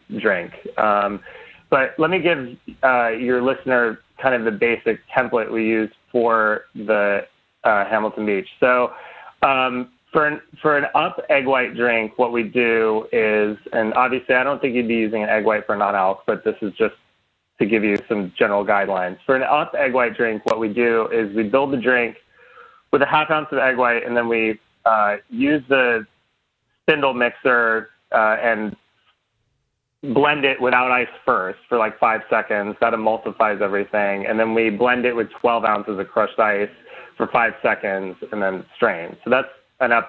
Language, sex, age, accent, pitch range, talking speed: English, male, 30-49, American, 110-130 Hz, 185 wpm